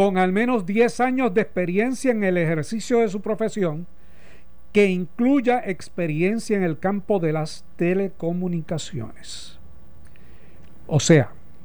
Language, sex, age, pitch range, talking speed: Spanish, male, 60-79, 135-185 Hz, 125 wpm